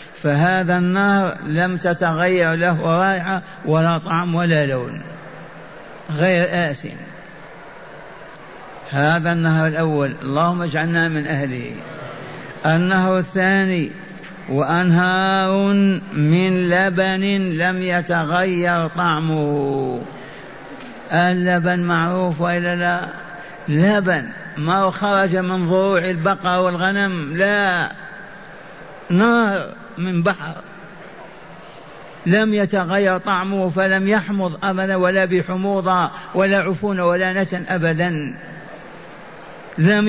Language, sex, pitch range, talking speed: Arabic, male, 165-190 Hz, 85 wpm